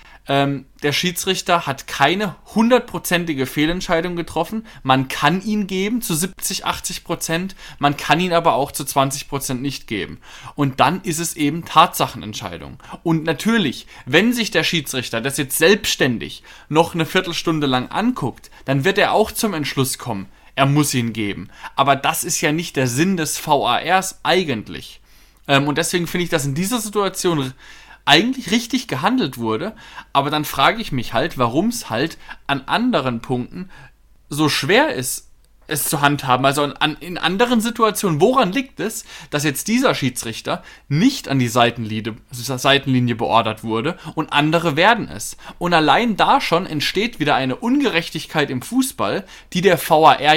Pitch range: 135-180 Hz